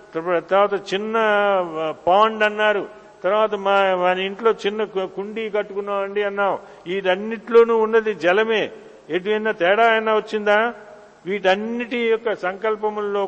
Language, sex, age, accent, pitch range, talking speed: Telugu, male, 50-69, native, 195-225 Hz, 100 wpm